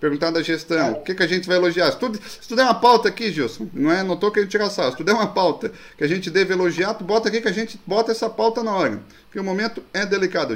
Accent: Brazilian